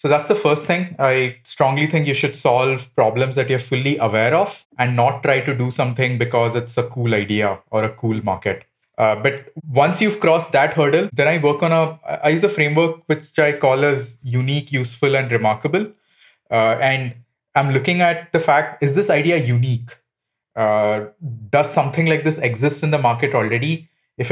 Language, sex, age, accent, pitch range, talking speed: English, male, 20-39, Indian, 120-155 Hz, 190 wpm